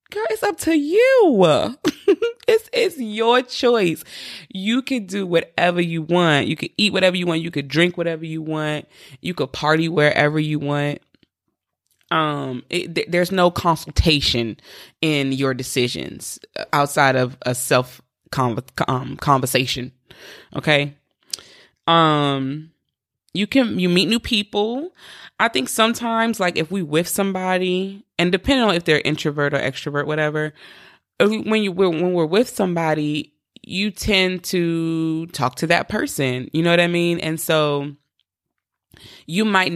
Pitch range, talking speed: 140-185 Hz, 145 wpm